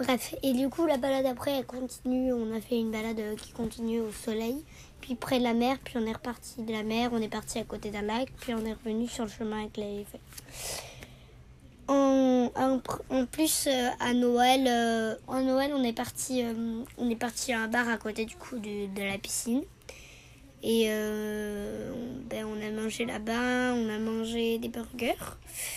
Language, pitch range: French, 225-255 Hz